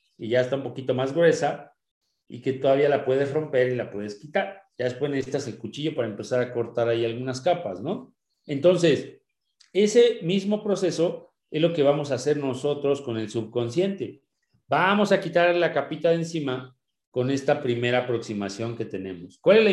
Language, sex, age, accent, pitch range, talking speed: Spanish, male, 40-59, Mexican, 130-180 Hz, 185 wpm